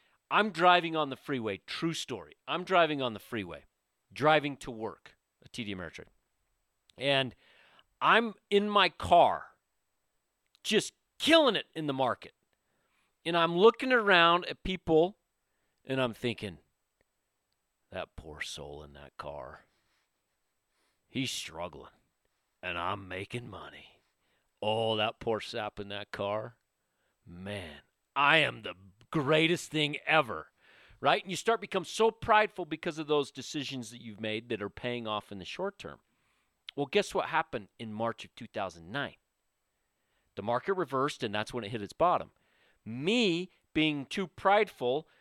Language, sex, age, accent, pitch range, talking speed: English, male, 40-59, American, 105-170 Hz, 145 wpm